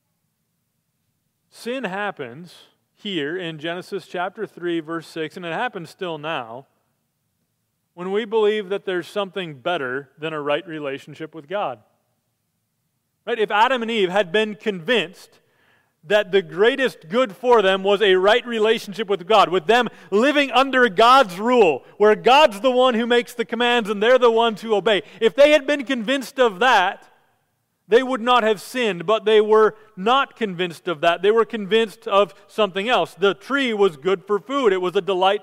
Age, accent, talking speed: 40-59, American, 175 wpm